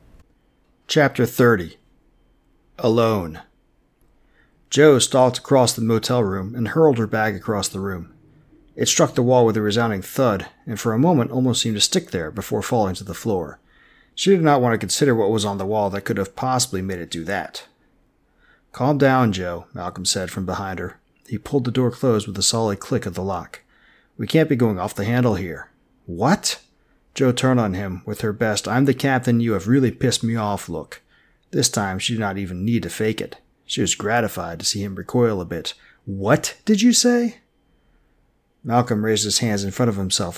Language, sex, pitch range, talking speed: English, male, 100-125 Hz, 185 wpm